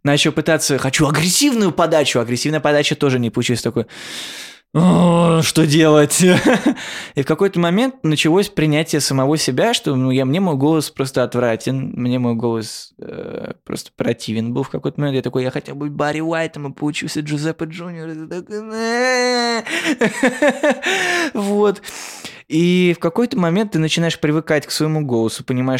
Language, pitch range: Russian, 120-160 Hz